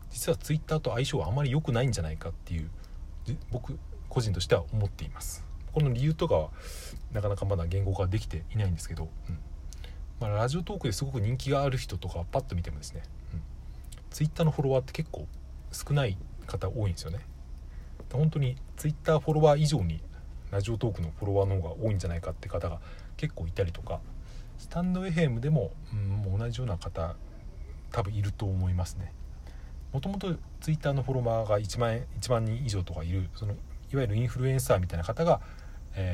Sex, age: male, 40-59